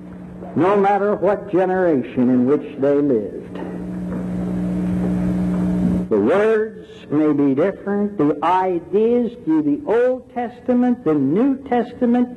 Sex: male